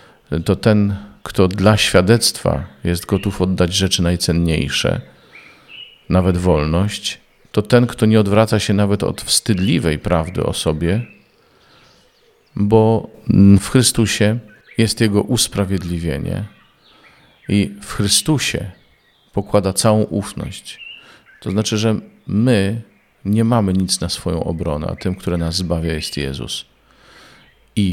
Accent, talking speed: native, 115 wpm